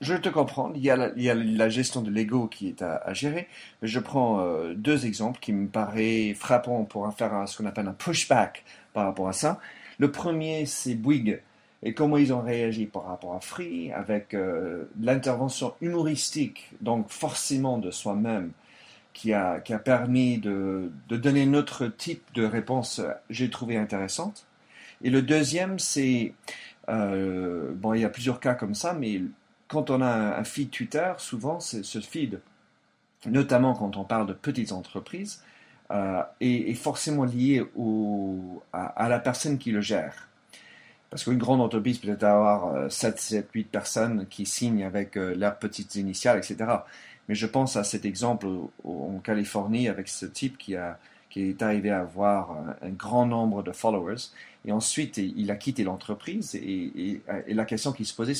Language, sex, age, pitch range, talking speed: French, male, 40-59, 105-130 Hz, 175 wpm